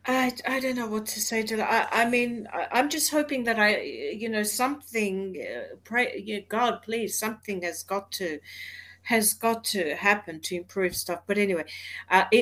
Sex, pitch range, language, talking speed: female, 185-245 Hz, English, 185 wpm